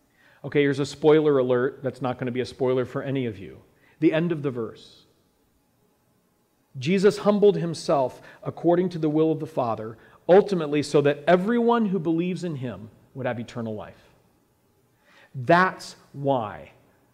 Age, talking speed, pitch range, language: 40-59, 160 wpm, 140-185 Hz, English